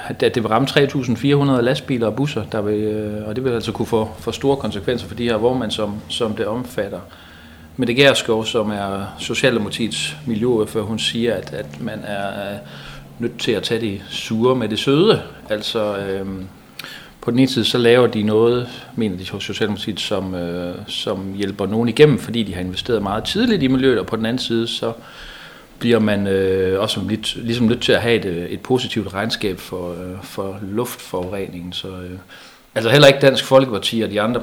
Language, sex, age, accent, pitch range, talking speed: Danish, male, 40-59, native, 95-115 Hz, 195 wpm